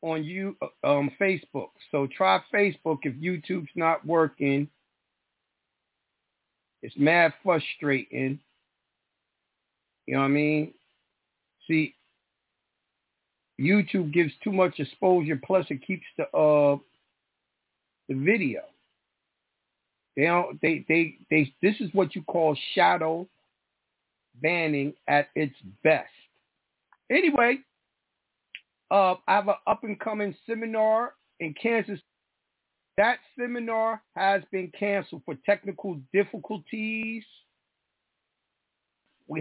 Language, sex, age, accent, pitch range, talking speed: English, male, 50-69, American, 150-195 Hz, 100 wpm